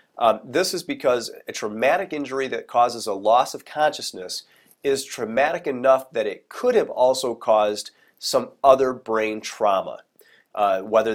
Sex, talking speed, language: male, 150 wpm, English